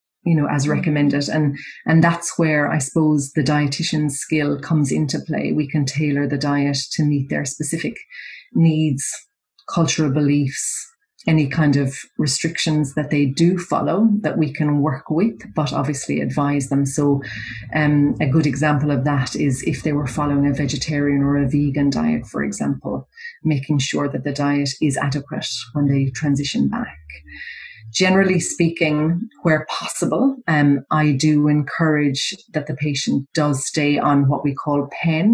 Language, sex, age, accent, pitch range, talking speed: English, female, 30-49, Irish, 145-165 Hz, 160 wpm